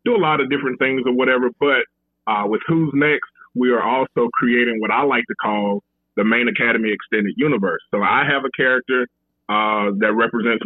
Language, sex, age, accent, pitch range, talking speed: English, male, 30-49, American, 110-130 Hz, 195 wpm